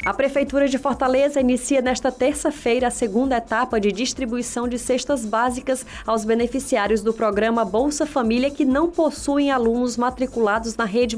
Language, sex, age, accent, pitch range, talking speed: Portuguese, female, 20-39, Brazilian, 225-265 Hz, 150 wpm